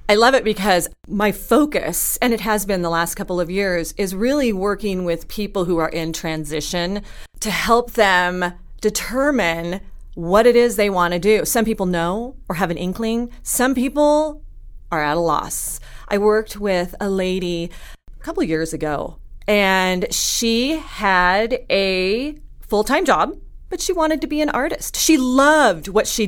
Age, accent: 30-49, American